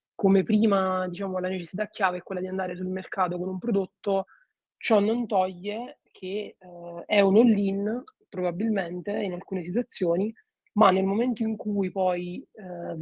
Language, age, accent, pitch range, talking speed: Italian, 20-39, native, 185-205 Hz, 155 wpm